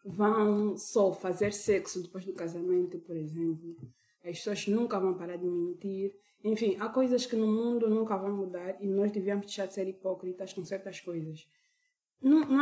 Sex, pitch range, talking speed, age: female, 185-230 Hz, 175 wpm, 20-39